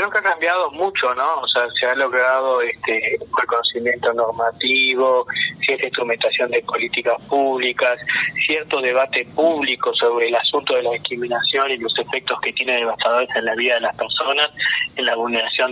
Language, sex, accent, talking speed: Spanish, male, Argentinian, 170 wpm